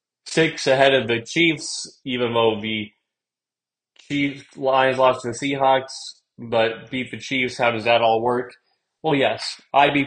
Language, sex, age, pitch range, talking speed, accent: English, male, 20-39, 115-135 Hz, 160 wpm, American